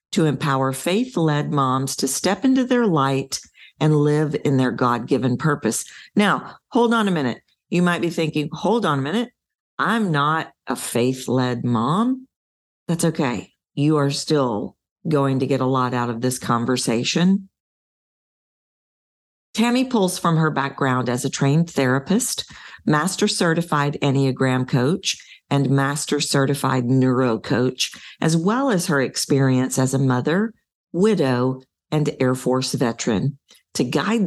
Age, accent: 40-59, American